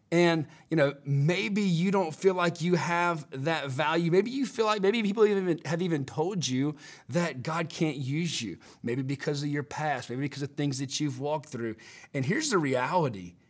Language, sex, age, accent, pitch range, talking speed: English, male, 40-59, American, 130-170 Hz, 200 wpm